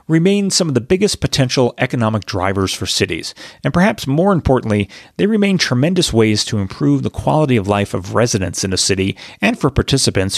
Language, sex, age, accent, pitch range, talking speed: English, male, 30-49, American, 100-145 Hz, 185 wpm